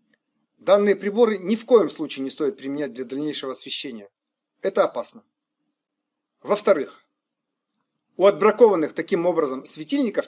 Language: Russian